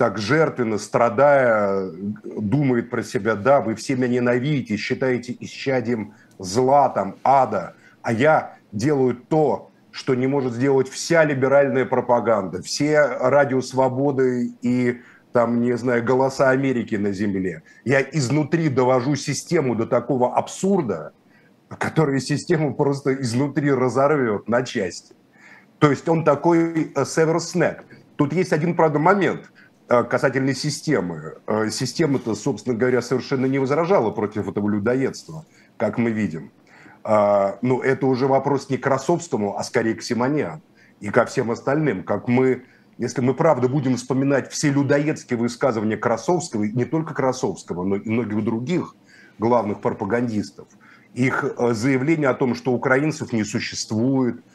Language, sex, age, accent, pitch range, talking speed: Russian, male, 50-69, native, 120-145 Hz, 130 wpm